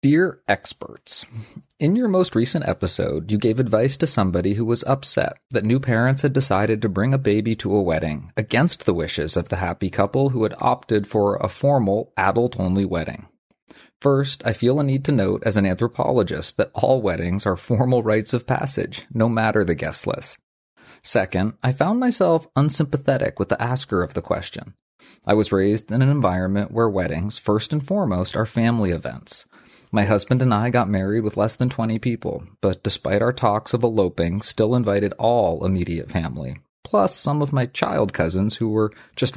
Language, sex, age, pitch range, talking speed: English, male, 30-49, 95-125 Hz, 185 wpm